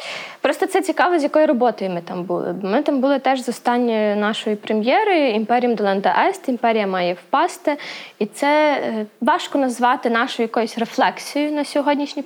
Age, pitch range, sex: 20-39, 210-275 Hz, female